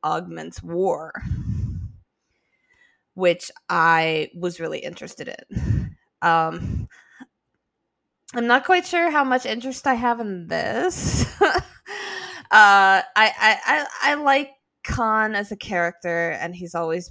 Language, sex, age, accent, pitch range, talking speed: English, female, 20-39, American, 170-260 Hz, 115 wpm